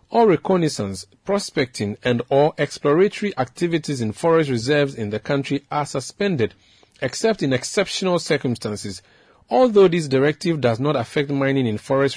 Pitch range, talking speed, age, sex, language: 120-165 Hz, 140 wpm, 40-59, male, English